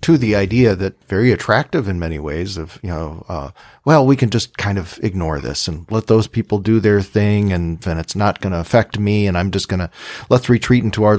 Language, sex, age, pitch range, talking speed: English, male, 40-59, 90-115 Hz, 240 wpm